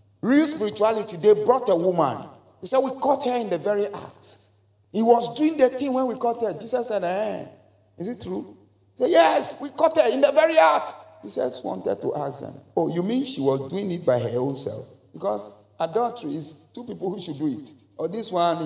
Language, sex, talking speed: English, male, 220 wpm